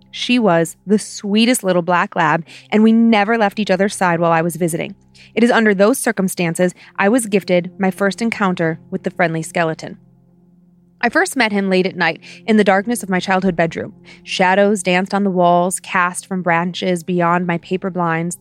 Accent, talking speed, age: American, 190 wpm, 30-49